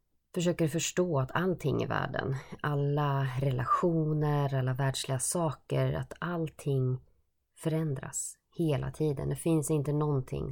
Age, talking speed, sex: 20-39, 115 wpm, female